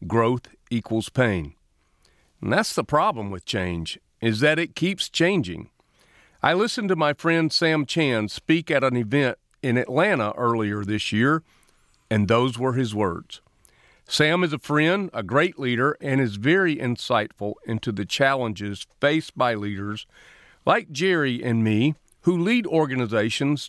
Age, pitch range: 50-69, 110-155 Hz